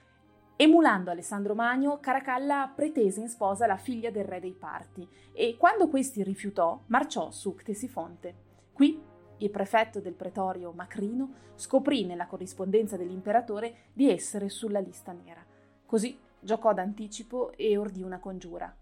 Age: 30-49